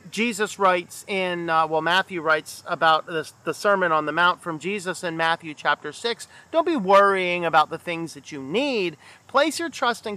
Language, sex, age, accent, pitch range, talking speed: English, male, 40-59, American, 175-240 Hz, 190 wpm